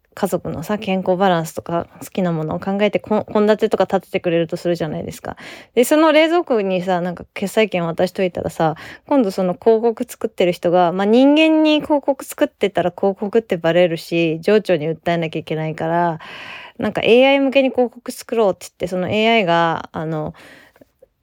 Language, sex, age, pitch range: Japanese, female, 20-39, 175-230 Hz